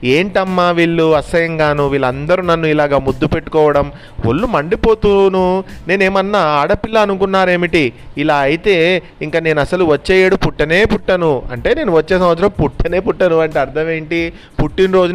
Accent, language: native, Telugu